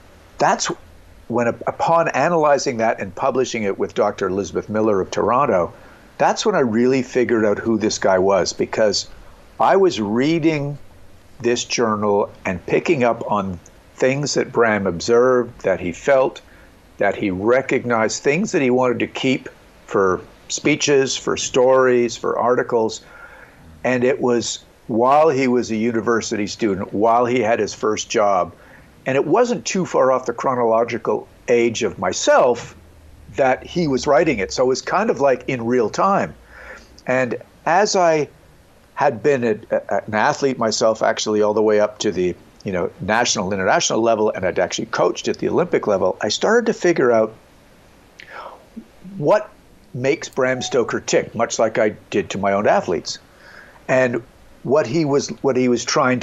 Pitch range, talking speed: 105-130 Hz, 160 wpm